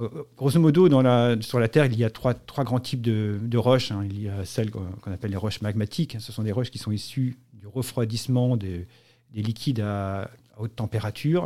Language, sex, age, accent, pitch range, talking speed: French, male, 40-59, French, 110-130 Hz, 215 wpm